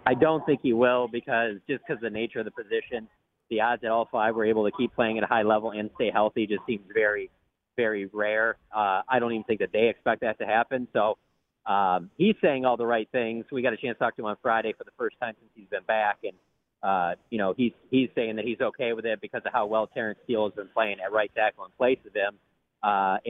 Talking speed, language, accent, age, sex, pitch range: 265 wpm, English, American, 40-59, male, 105-135 Hz